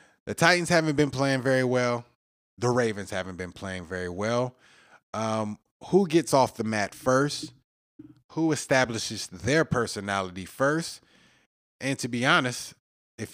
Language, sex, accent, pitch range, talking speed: English, male, American, 105-135 Hz, 140 wpm